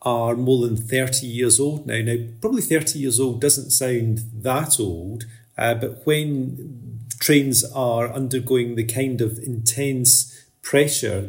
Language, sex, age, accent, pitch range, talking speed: English, male, 30-49, British, 115-130 Hz, 145 wpm